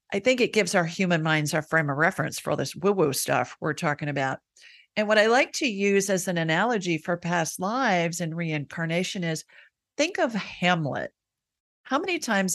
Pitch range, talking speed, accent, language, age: 155-210 Hz, 190 wpm, American, English, 50-69